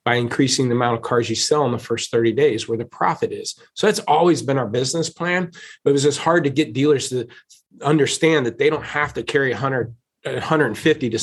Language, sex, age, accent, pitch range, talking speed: English, male, 30-49, American, 125-155 Hz, 225 wpm